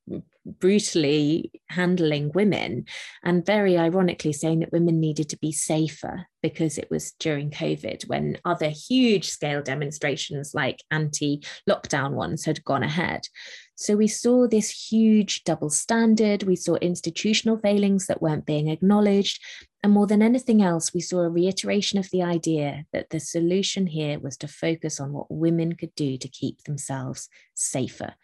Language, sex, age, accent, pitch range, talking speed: English, female, 20-39, British, 155-195 Hz, 155 wpm